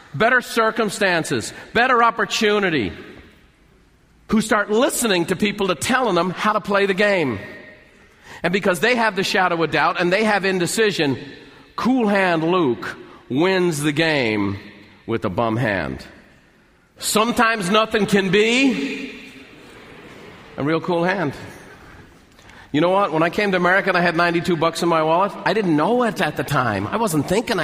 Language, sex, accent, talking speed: English, male, American, 160 wpm